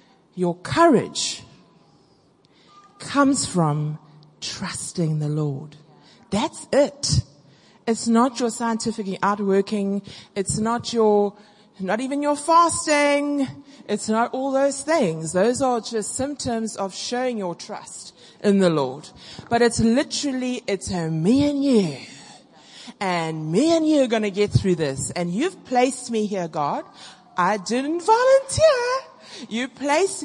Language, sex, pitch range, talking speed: English, female, 180-245 Hz, 130 wpm